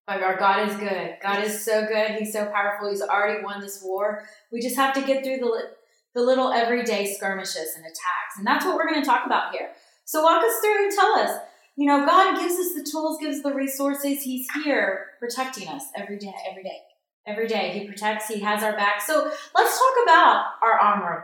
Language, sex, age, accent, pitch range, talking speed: English, female, 30-49, American, 190-270 Hz, 225 wpm